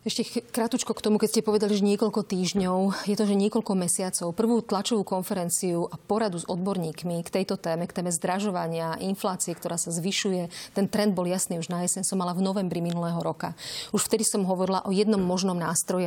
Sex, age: female, 30-49